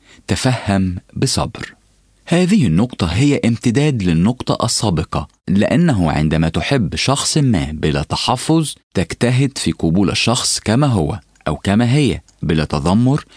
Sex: male